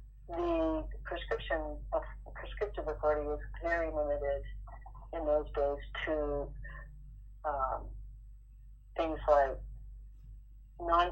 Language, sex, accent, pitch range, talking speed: English, female, American, 135-165 Hz, 85 wpm